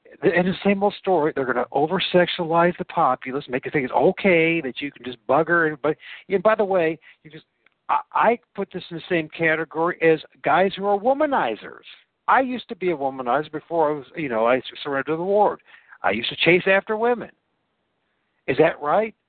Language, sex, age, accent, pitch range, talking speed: English, male, 60-79, American, 130-190 Hz, 205 wpm